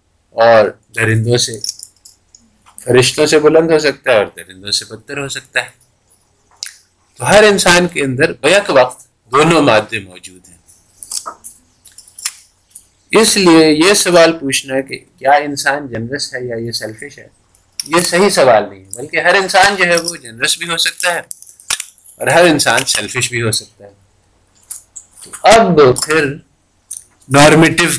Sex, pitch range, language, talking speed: male, 110-160 Hz, Urdu, 150 wpm